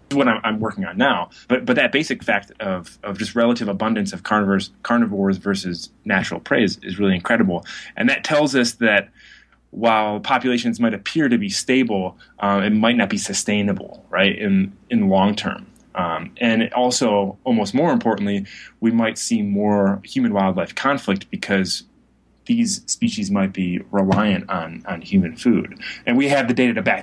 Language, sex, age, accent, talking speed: English, male, 20-39, American, 175 wpm